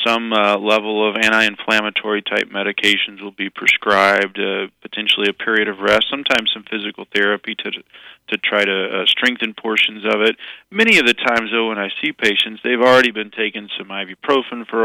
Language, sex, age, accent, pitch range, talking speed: English, male, 40-59, American, 100-115 Hz, 180 wpm